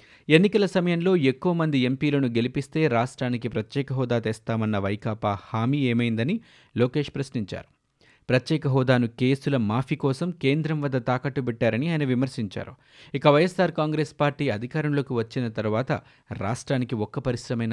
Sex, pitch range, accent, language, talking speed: male, 115-150 Hz, native, Telugu, 120 wpm